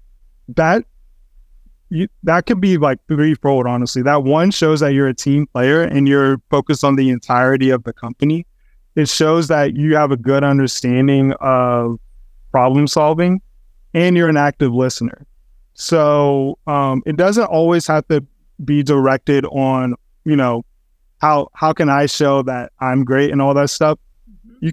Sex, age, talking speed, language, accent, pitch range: male, 20-39, 160 wpm, English, American, 130-155 Hz